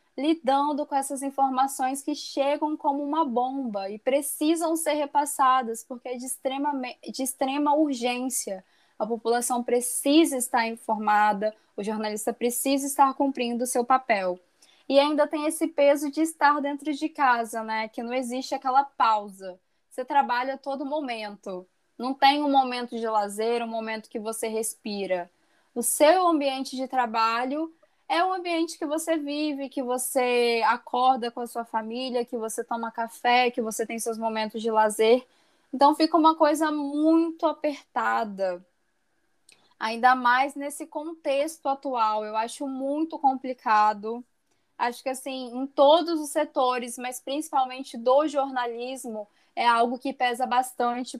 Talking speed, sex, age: 145 wpm, female, 10-29